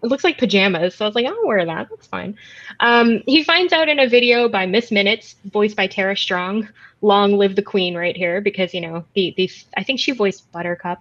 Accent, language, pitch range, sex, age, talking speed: American, English, 185-240 Hz, female, 20-39, 235 wpm